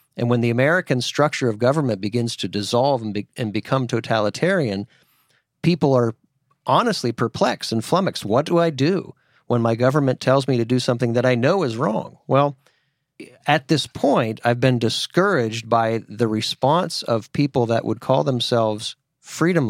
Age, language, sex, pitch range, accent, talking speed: 40-59, English, male, 115-140 Hz, American, 170 wpm